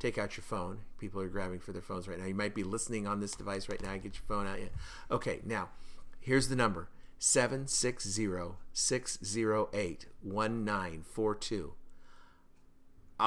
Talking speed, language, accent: 140 wpm, English, American